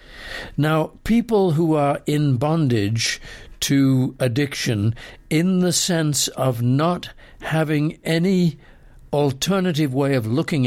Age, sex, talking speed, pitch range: 60-79, male, 105 wpm, 120-150 Hz